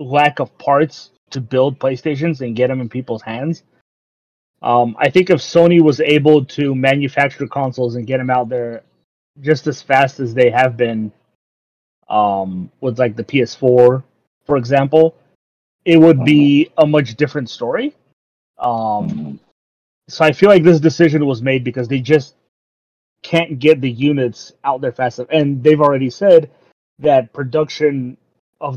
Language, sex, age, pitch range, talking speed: English, male, 30-49, 115-150 Hz, 155 wpm